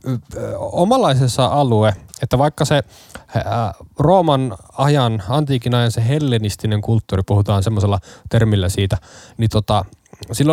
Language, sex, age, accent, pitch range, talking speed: Finnish, male, 20-39, native, 105-135 Hz, 110 wpm